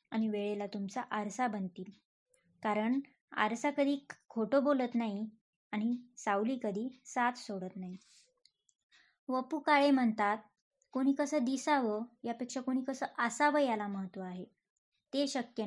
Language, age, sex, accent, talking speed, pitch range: Marathi, 20-39, male, native, 120 wpm, 215-270 Hz